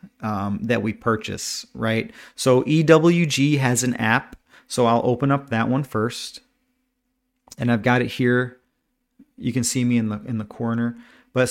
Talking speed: 165 wpm